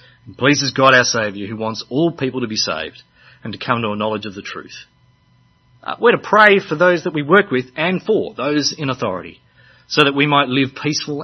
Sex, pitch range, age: male, 120-150 Hz, 40-59